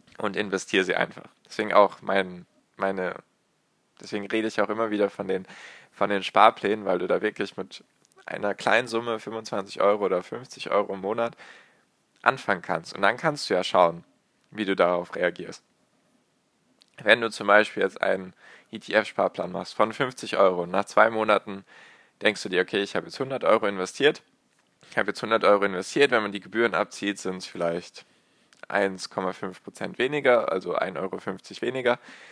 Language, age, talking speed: German, 20-39, 170 wpm